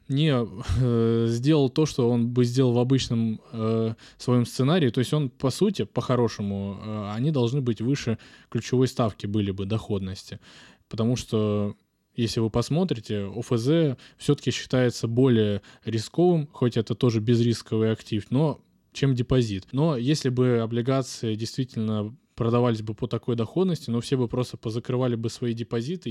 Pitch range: 110-130 Hz